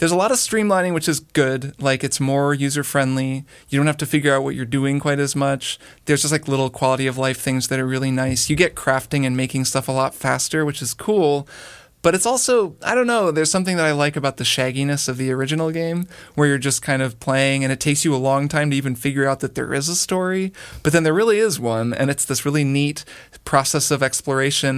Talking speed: 250 wpm